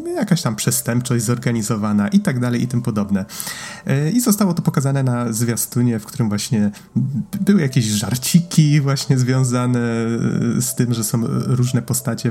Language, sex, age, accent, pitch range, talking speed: Polish, male, 30-49, native, 115-145 Hz, 145 wpm